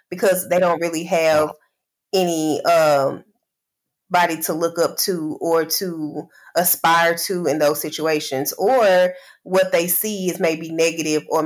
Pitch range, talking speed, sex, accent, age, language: 165-185 Hz, 140 wpm, female, American, 20-39, English